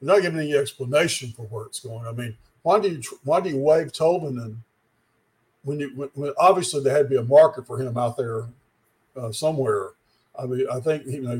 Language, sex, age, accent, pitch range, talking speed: English, male, 50-69, American, 120-150 Hz, 220 wpm